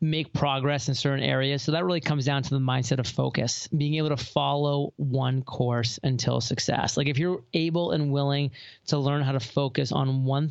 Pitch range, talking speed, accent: 135-155 Hz, 205 wpm, American